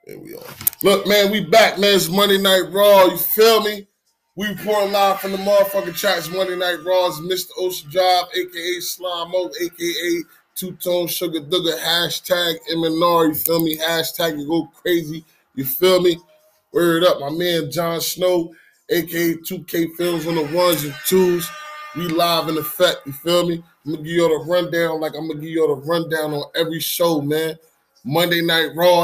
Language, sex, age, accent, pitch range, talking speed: English, male, 20-39, American, 150-180 Hz, 195 wpm